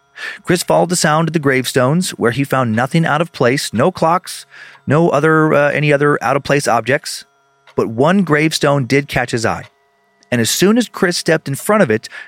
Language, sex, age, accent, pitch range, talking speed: English, male, 40-59, American, 120-160 Hz, 195 wpm